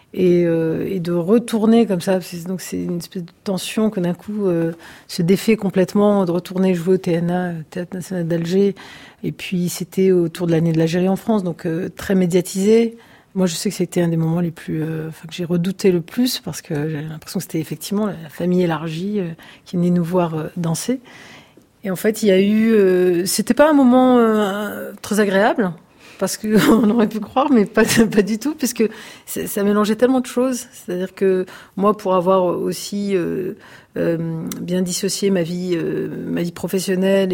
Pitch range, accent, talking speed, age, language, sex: 175-210 Hz, French, 200 wpm, 40-59, French, female